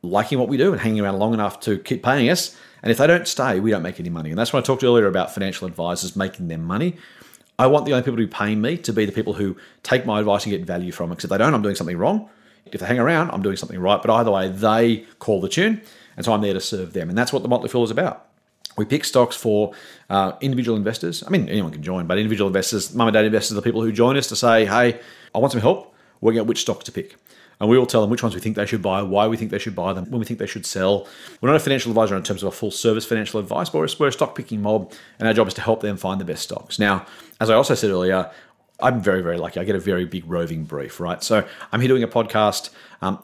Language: English